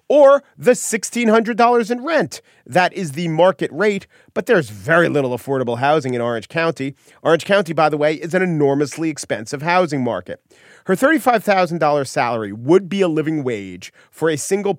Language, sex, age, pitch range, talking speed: English, male, 40-59, 140-200 Hz, 165 wpm